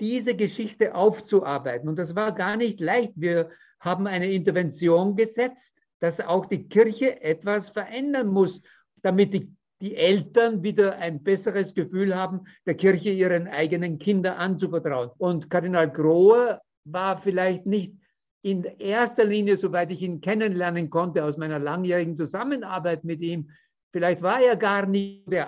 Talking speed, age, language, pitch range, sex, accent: 145 wpm, 50-69, German, 170-205 Hz, male, German